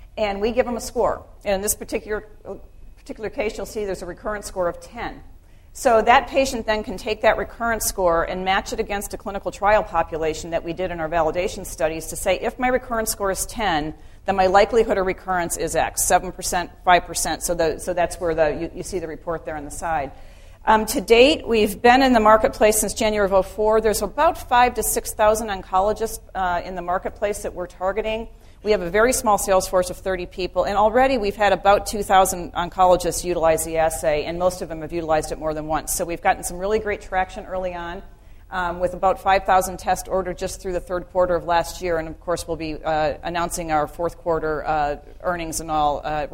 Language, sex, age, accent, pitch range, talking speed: English, female, 40-59, American, 165-210 Hz, 220 wpm